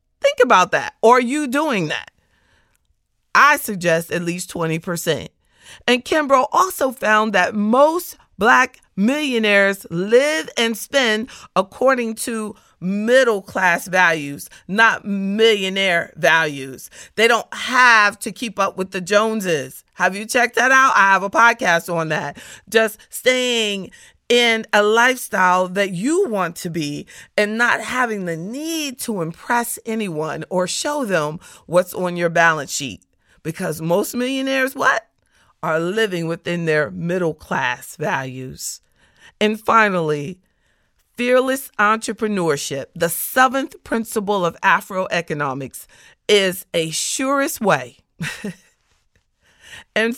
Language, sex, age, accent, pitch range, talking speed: English, female, 40-59, American, 175-245 Hz, 120 wpm